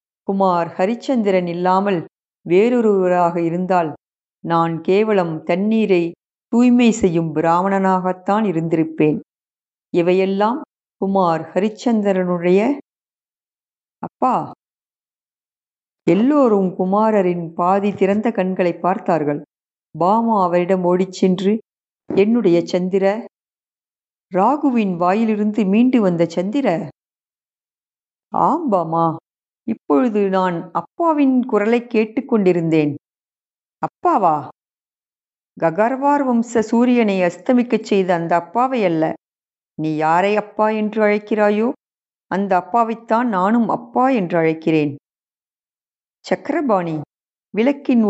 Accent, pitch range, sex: native, 175-220 Hz, female